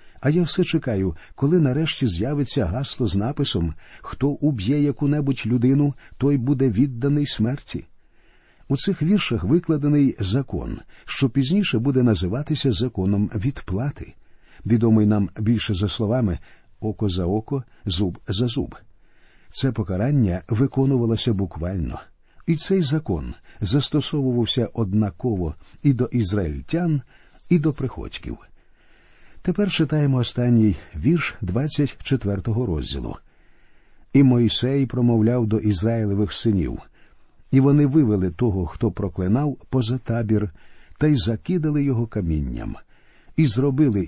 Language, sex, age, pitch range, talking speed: Ukrainian, male, 50-69, 100-140 Hz, 115 wpm